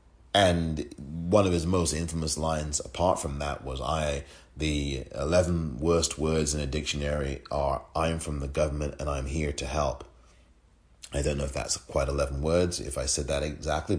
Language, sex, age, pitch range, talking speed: English, male, 30-49, 75-90 Hz, 180 wpm